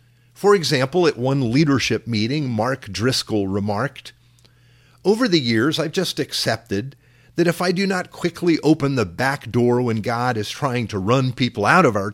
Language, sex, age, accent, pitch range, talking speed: English, male, 50-69, American, 115-150 Hz, 175 wpm